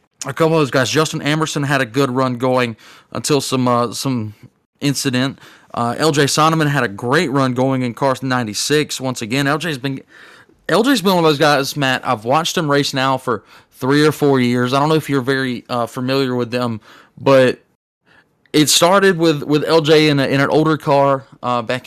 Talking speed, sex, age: 205 wpm, male, 20-39